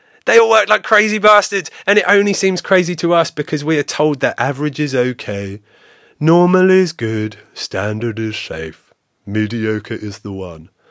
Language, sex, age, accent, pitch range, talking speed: English, male, 30-49, British, 120-170 Hz, 170 wpm